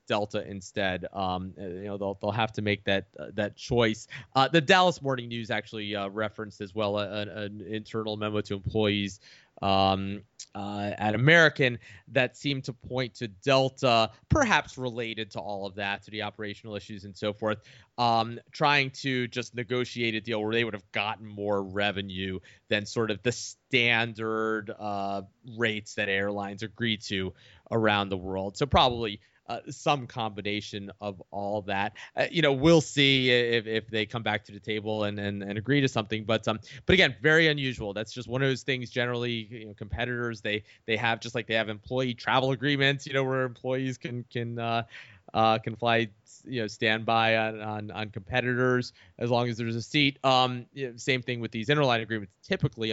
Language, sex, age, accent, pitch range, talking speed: English, male, 20-39, American, 105-125 Hz, 185 wpm